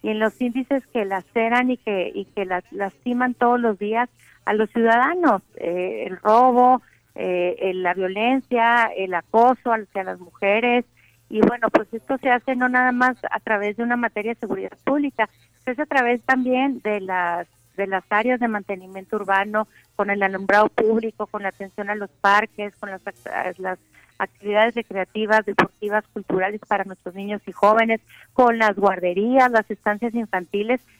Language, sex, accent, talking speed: Spanish, female, Mexican, 170 wpm